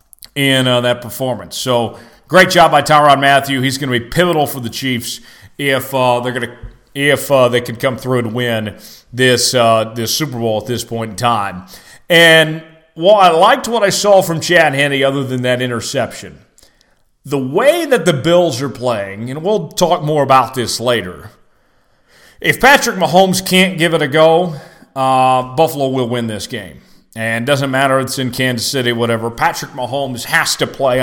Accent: American